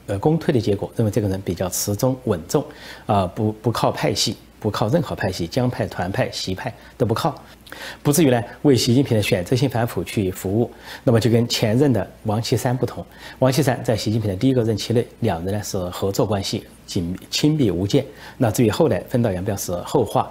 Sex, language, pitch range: male, Chinese, 100-130 Hz